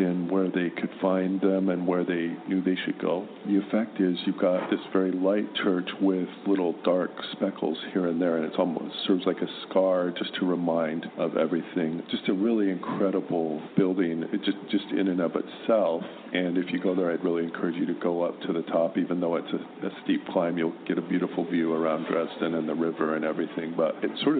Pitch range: 85-95 Hz